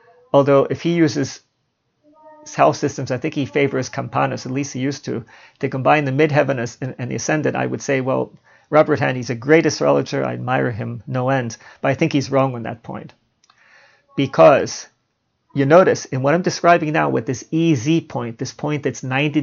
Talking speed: 190 wpm